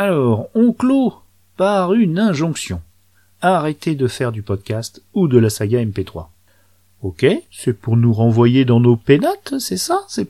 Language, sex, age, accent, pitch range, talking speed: French, male, 40-59, French, 105-155 Hz, 155 wpm